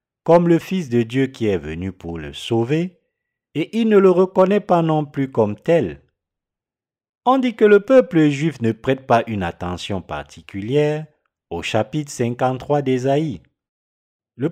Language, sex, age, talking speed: French, male, 50-69, 155 wpm